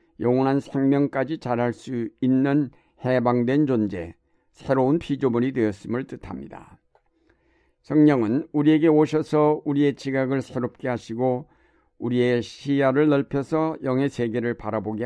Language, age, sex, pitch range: Korean, 60-79, male, 120-145 Hz